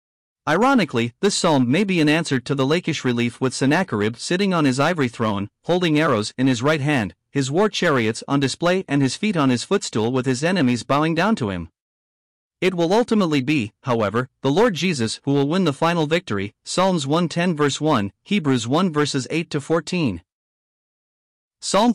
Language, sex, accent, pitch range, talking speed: English, male, American, 130-165 Hz, 185 wpm